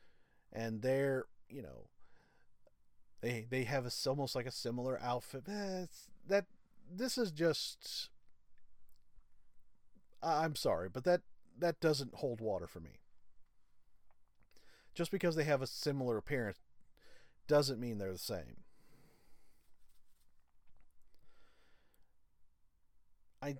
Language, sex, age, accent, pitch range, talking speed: English, male, 40-59, American, 100-160 Hz, 100 wpm